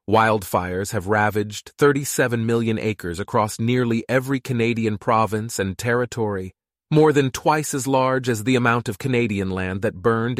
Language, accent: English, American